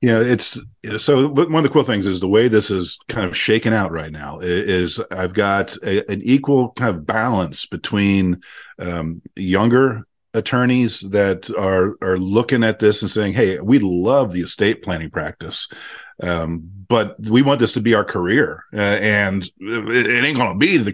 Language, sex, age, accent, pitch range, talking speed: English, male, 50-69, American, 95-125 Hz, 185 wpm